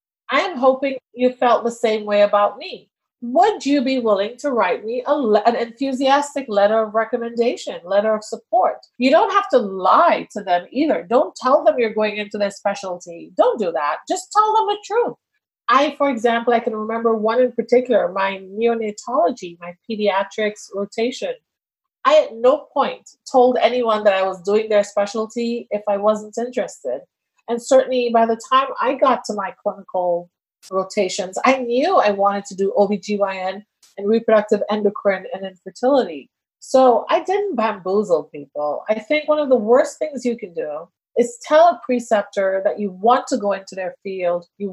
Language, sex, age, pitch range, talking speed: English, female, 40-59, 200-255 Hz, 175 wpm